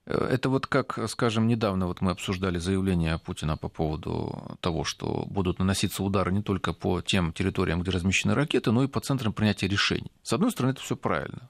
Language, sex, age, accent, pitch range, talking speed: Russian, male, 40-59, native, 95-130 Hz, 195 wpm